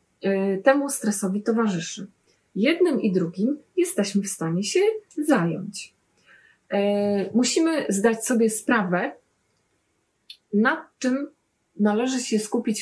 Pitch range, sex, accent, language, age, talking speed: 190-235 Hz, female, native, Polish, 30-49, 95 wpm